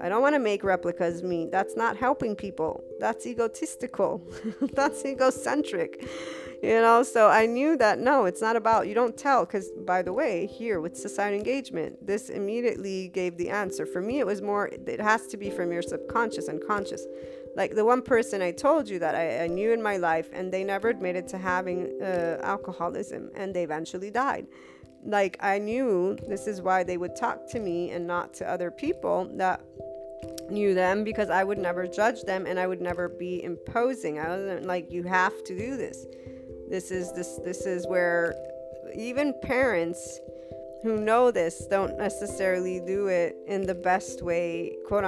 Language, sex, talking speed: English, female, 185 wpm